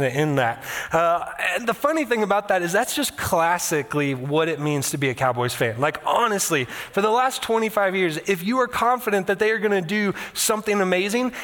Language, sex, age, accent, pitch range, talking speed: English, male, 20-39, American, 180-235 Hz, 215 wpm